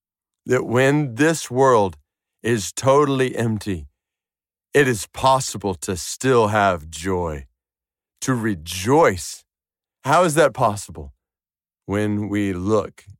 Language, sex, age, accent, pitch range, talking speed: English, male, 40-59, American, 90-130 Hz, 105 wpm